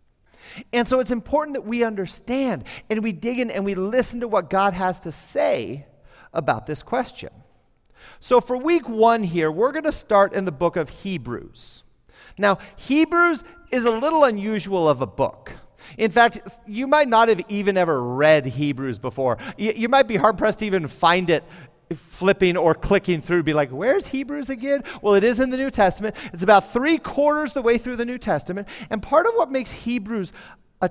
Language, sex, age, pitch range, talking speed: English, male, 40-59, 170-235 Hz, 190 wpm